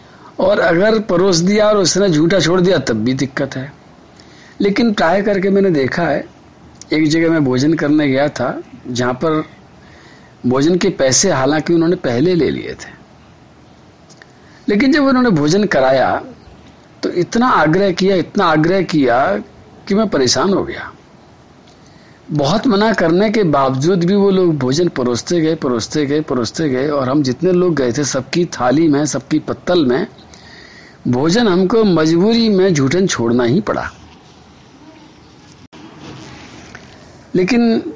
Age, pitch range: 50-69, 140-195 Hz